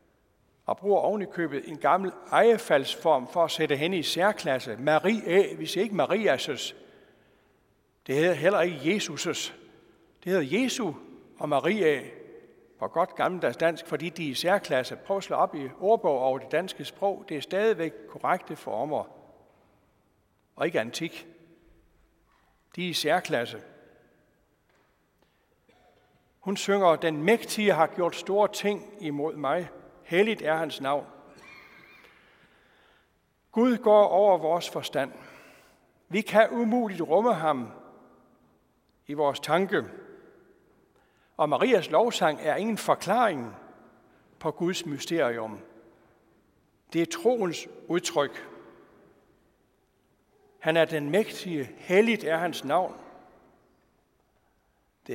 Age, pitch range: 60-79, 150-205 Hz